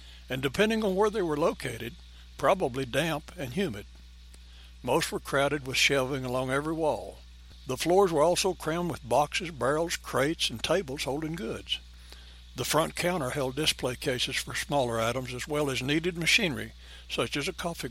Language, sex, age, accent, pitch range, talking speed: English, male, 60-79, American, 115-170 Hz, 170 wpm